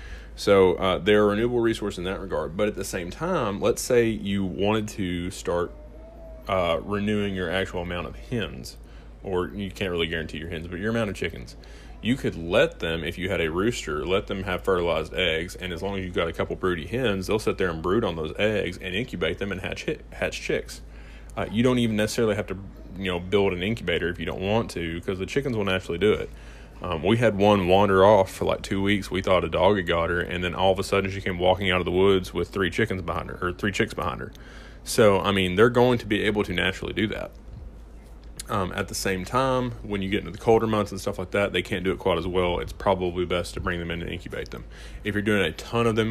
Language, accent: English, American